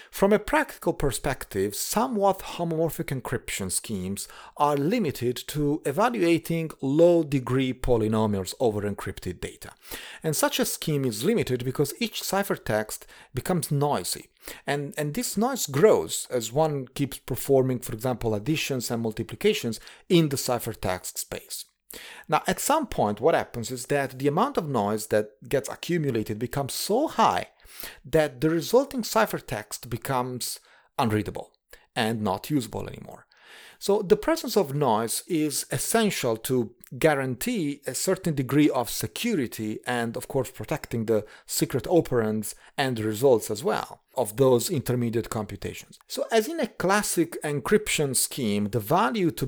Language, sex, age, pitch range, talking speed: English, male, 40-59, 120-170 Hz, 135 wpm